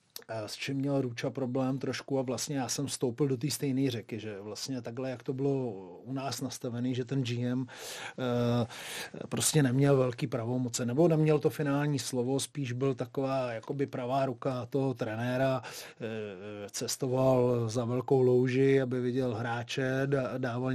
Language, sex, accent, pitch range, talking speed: Czech, male, native, 120-135 Hz, 160 wpm